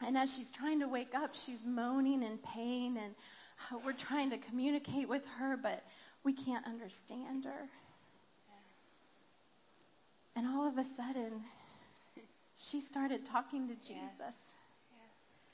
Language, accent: English, American